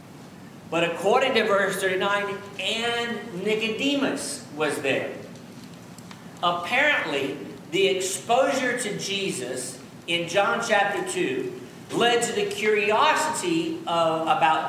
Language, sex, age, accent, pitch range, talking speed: English, male, 50-69, American, 170-210 Hz, 95 wpm